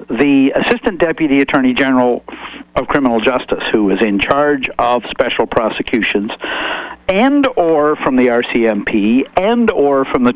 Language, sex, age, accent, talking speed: English, male, 60-79, American, 140 wpm